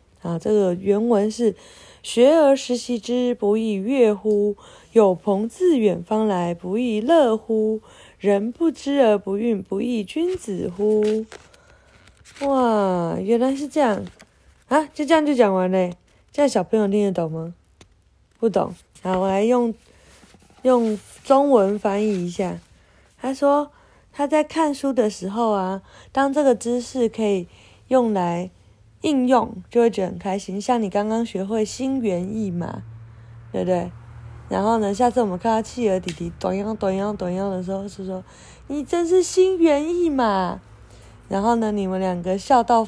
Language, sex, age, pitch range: Chinese, female, 20-39, 190-245 Hz